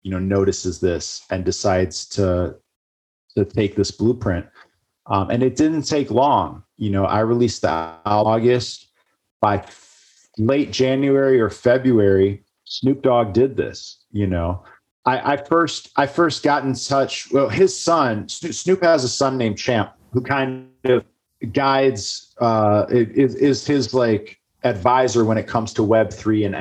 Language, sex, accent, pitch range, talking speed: English, male, American, 105-130 Hz, 155 wpm